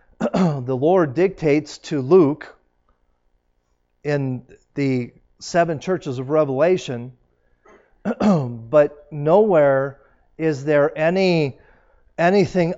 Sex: male